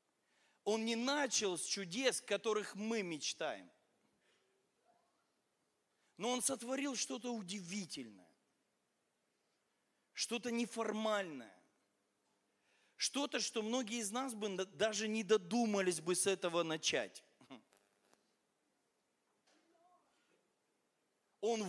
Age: 40-59